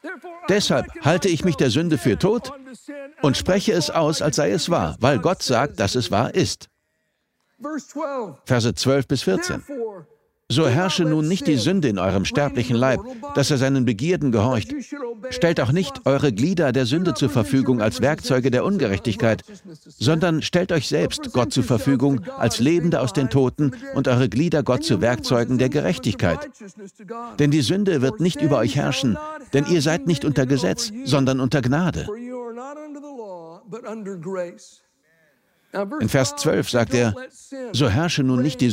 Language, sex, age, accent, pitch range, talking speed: German, male, 60-79, German, 130-195 Hz, 160 wpm